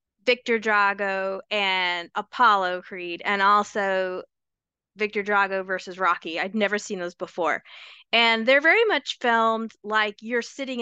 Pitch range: 205-255 Hz